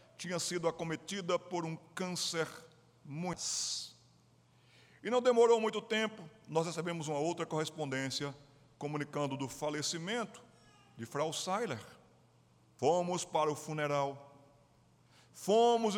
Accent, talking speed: Brazilian, 105 wpm